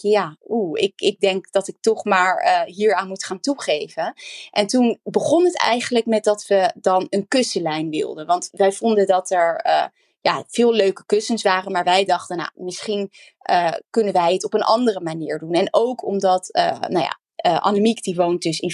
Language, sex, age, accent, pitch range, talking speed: Dutch, female, 20-39, Dutch, 185-225 Hz, 200 wpm